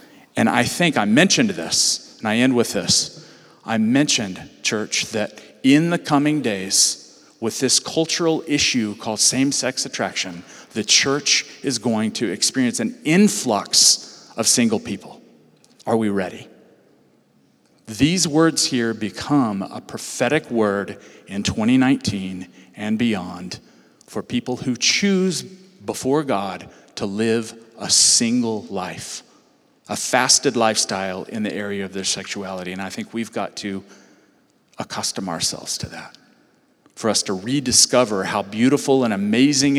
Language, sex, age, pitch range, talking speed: English, male, 40-59, 105-140 Hz, 135 wpm